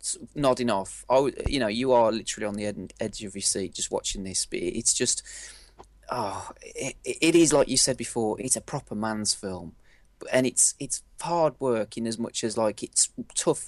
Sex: male